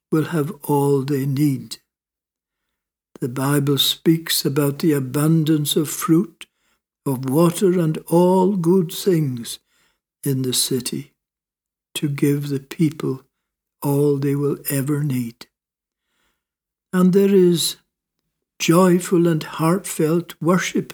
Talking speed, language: 110 wpm, English